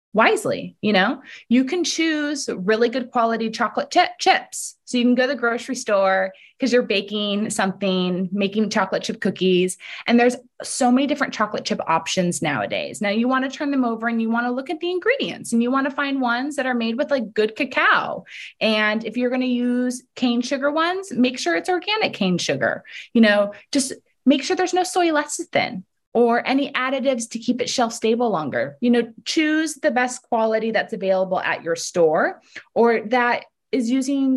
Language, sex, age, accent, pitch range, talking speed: English, female, 20-39, American, 210-270 Hz, 195 wpm